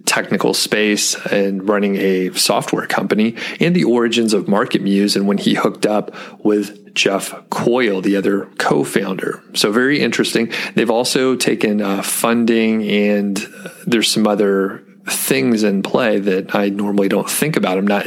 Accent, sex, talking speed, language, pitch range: American, male, 155 wpm, English, 100-115 Hz